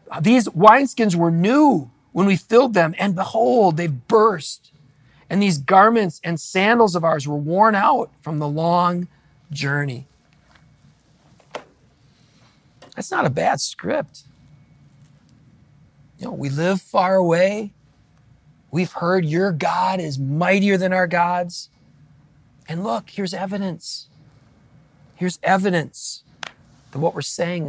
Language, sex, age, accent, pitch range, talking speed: English, male, 40-59, American, 140-175 Hz, 120 wpm